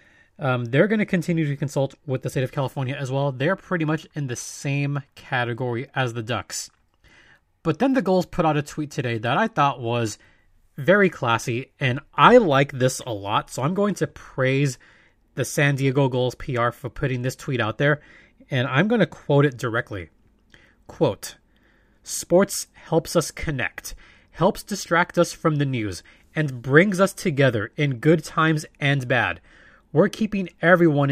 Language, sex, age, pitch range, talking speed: English, male, 20-39, 120-155 Hz, 175 wpm